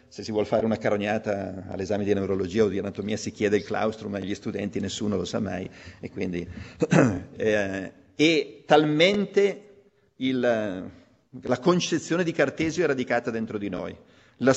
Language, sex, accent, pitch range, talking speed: Italian, male, native, 105-140 Hz, 160 wpm